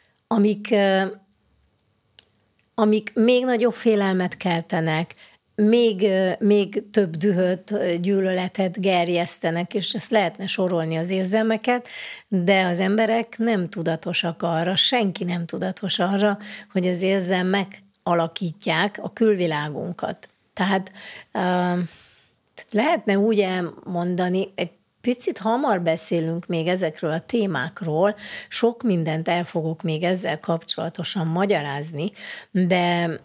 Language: Hungarian